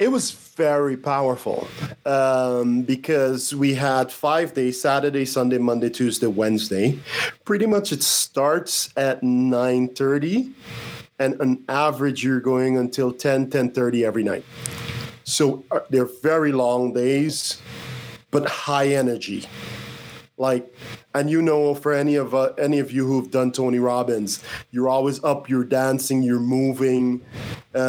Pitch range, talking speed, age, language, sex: 125-140 Hz, 125 wpm, 40-59, English, male